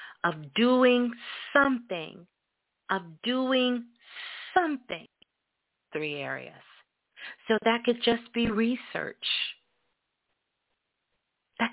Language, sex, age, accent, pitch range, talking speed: English, female, 40-59, American, 185-270 Hz, 75 wpm